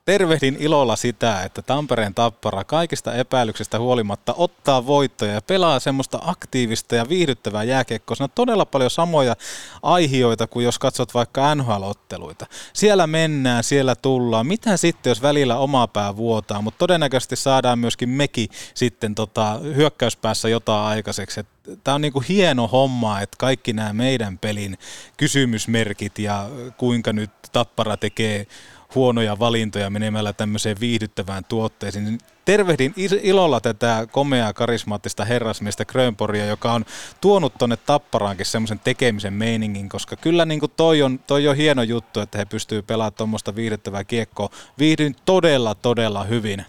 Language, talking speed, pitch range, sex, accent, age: Finnish, 135 wpm, 105-135 Hz, male, native, 20-39